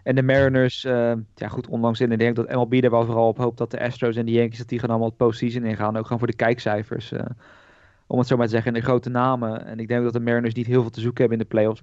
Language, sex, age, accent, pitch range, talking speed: Dutch, male, 20-39, Dutch, 110-120 Hz, 315 wpm